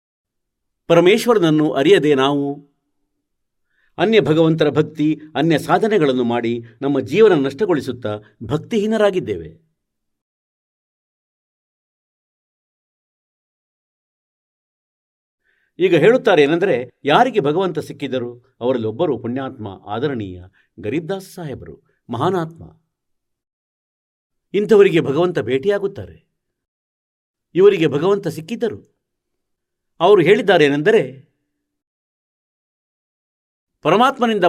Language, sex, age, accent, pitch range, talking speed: Kannada, male, 50-69, native, 125-195 Hz, 60 wpm